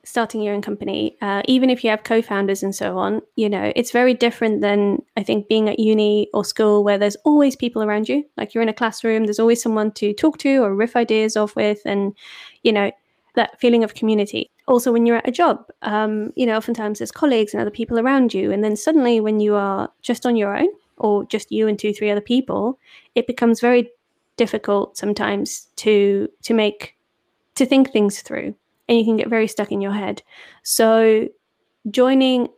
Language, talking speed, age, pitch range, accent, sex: English, 210 wpm, 20-39, 210-245 Hz, British, female